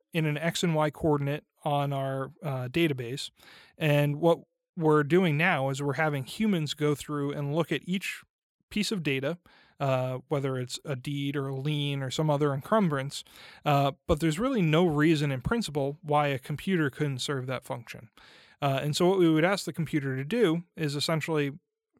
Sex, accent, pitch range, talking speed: male, American, 140-165 Hz, 185 wpm